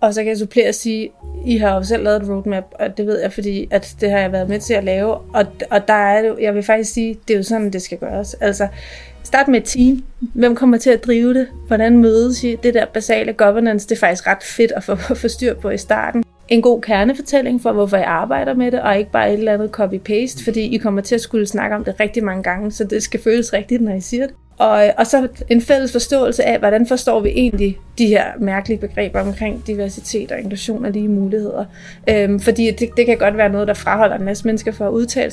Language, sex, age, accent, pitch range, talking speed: Danish, female, 30-49, native, 205-235 Hz, 255 wpm